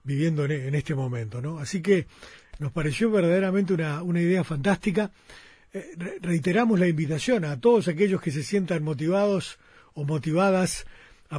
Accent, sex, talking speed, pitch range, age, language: Argentinian, male, 140 wpm, 150-200 Hz, 40-59, Spanish